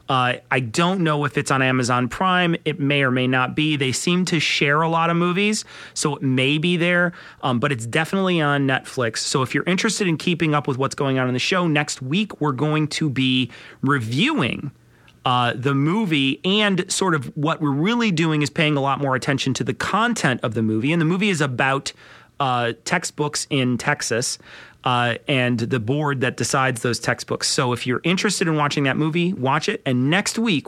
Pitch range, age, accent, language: 125-160 Hz, 30-49, American, English